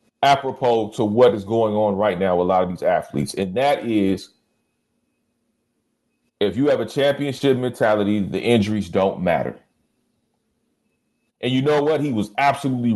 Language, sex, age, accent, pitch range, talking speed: English, male, 40-59, American, 120-165 Hz, 155 wpm